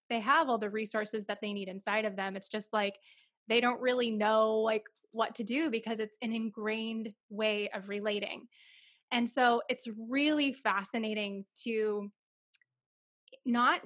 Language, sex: English, female